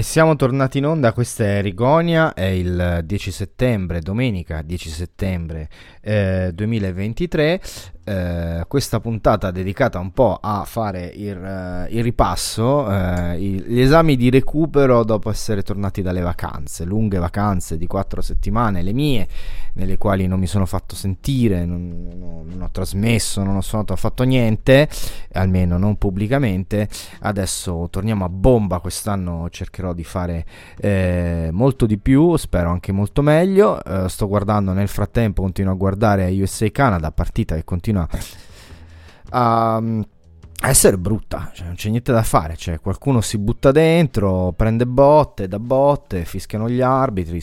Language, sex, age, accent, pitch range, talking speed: Italian, male, 20-39, native, 90-115 Hz, 140 wpm